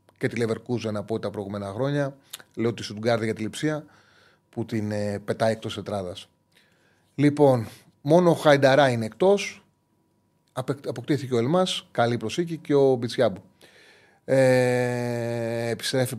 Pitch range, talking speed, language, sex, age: 110-140 Hz, 125 wpm, Greek, male, 30-49